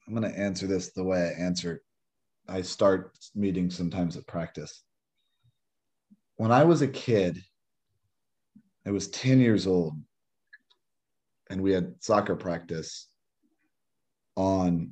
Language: English